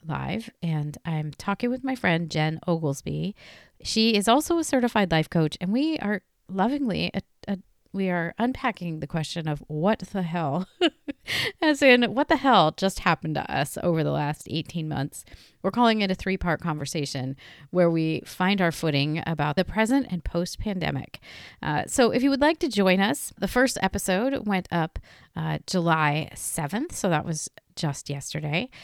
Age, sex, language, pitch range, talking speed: 30-49, female, English, 160-225 Hz, 165 wpm